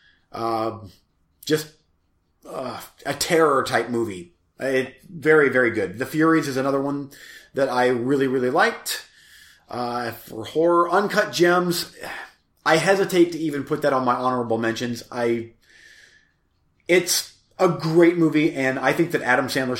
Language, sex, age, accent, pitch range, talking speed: English, male, 30-49, American, 120-160 Hz, 140 wpm